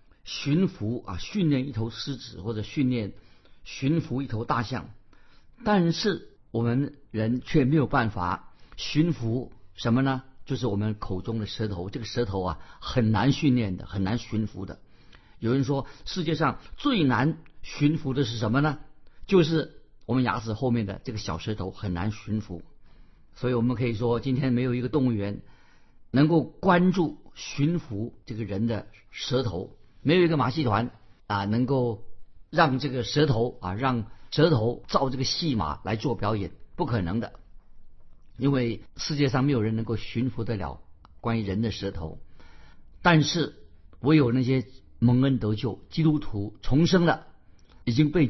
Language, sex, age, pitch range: Chinese, male, 50-69, 105-140 Hz